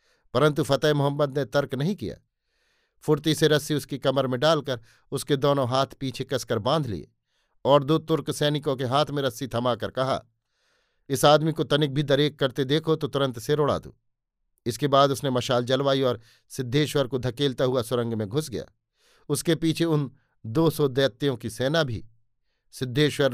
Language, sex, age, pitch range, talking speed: Hindi, male, 50-69, 125-145 Hz, 170 wpm